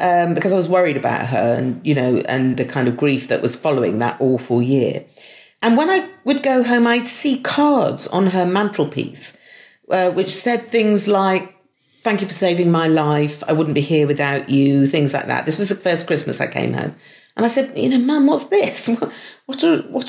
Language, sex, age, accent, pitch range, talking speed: English, female, 40-59, British, 140-215 Hz, 215 wpm